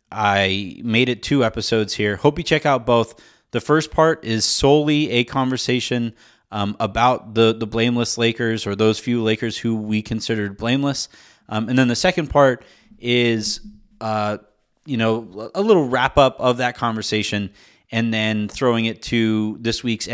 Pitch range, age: 105-135 Hz, 30-49